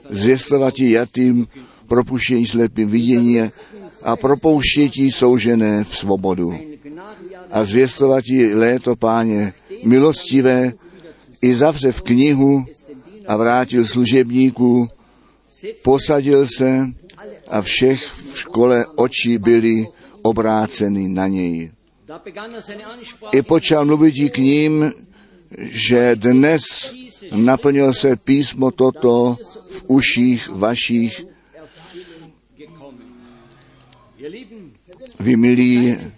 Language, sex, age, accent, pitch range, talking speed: Czech, male, 50-69, native, 115-145 Hz, 80 wpm